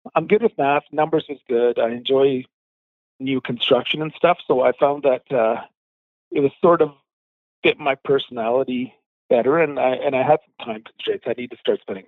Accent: American